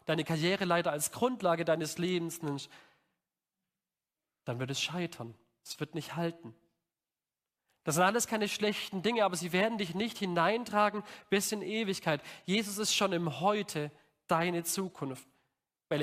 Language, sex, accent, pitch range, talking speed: German, male, German, 150-190 Hz, 145 wpm